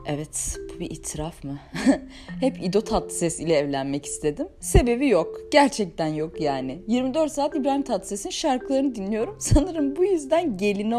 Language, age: Turkish, 30-49